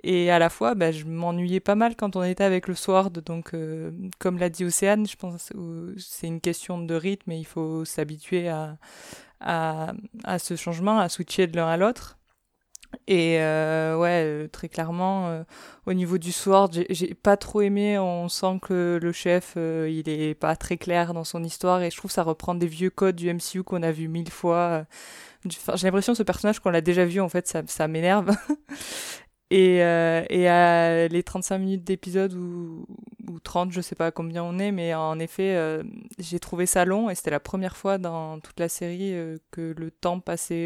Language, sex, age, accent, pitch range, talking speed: French, female, 20-39, French, 165-190 Hz, 205 wpm